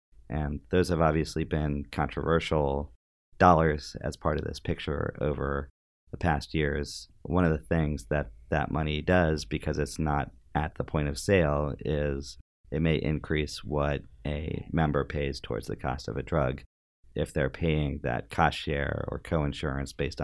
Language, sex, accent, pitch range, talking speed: English, male, American, 70-80 Hz, 165 wpm